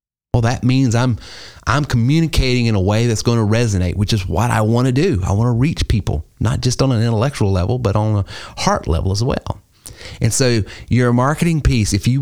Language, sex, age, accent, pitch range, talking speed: English, male, 30-49, American, 95-125 Hz, 220 wpm